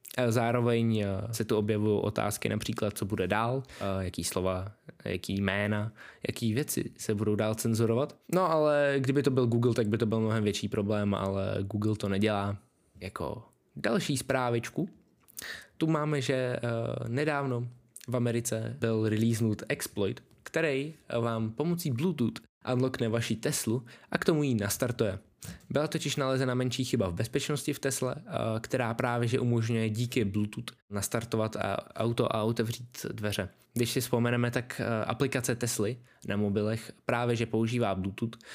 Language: Czech